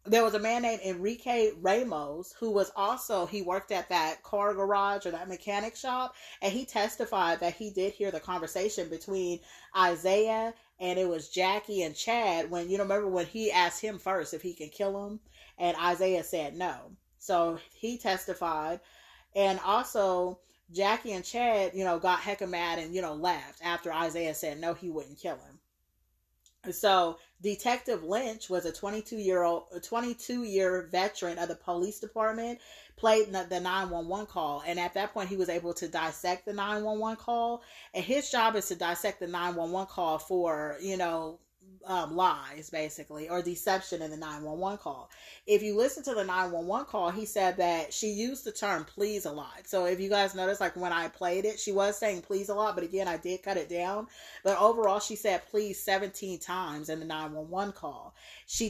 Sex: female